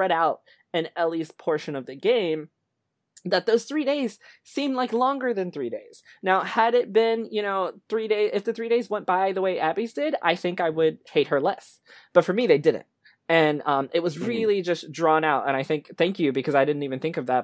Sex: male